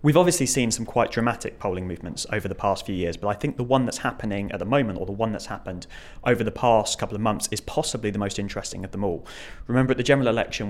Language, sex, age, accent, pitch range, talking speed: English, male, 20-39, British, 95-115 Hz, 265 wpm